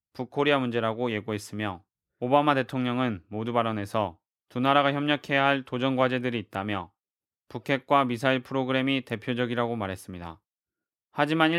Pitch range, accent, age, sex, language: 120-135 Hz, native, 20-39, male, Korean